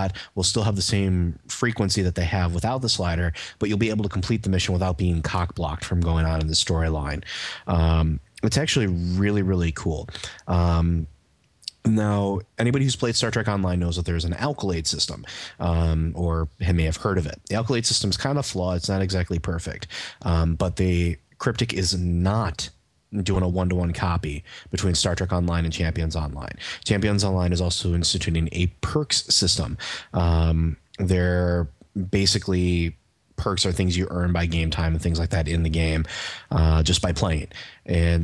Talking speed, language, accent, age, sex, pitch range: 185 wpm, English, American, 30-49, male, 85-95 Hz